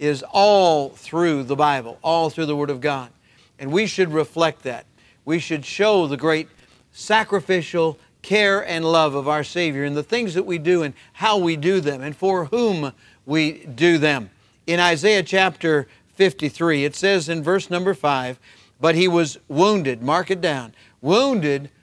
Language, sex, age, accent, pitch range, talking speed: English, male, 50-69, American, 140-190 Hz, 175 wpm